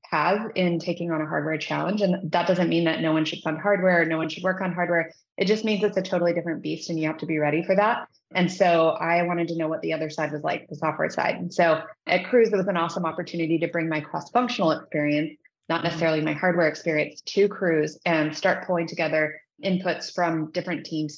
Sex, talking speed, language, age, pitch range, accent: female, 240 wpm, English, 20-39, 155-175 Hz, American